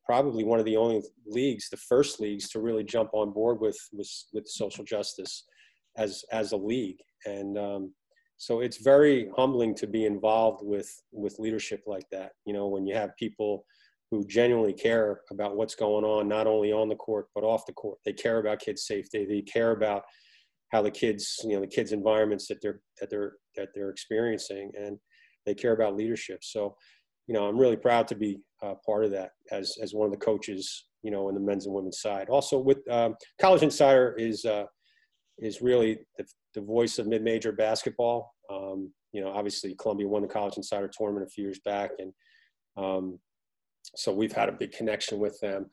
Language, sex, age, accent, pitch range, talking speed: English, male, 30-49, American, 100-110 Hz, 200 wpm